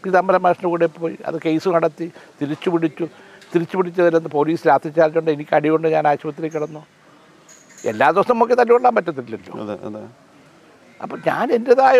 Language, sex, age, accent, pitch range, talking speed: Malayalam, male, 60-79, native, 160-200 Hz, 135 wpm